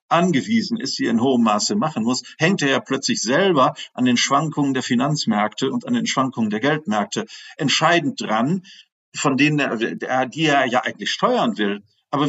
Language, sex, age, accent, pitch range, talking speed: German, male, 50-69, German, 130-200 Hz, 175 wpm